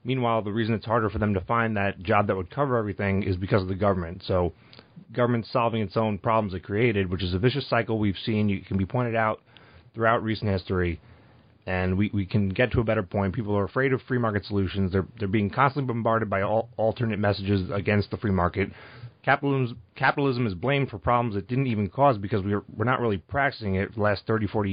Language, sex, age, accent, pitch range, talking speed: English, male, 30-49, American, 100-120 Hz, 225 wpm